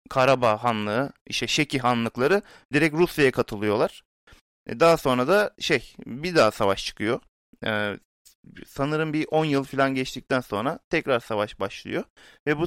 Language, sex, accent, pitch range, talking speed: Turkish, male, native, 115-150 Hz, 135 wpm